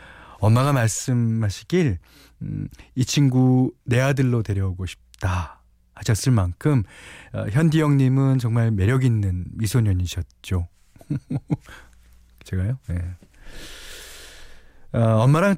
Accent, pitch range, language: native, 95-130 Hz, Korean